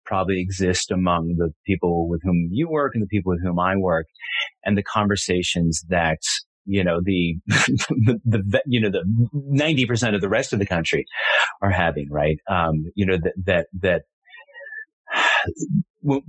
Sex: male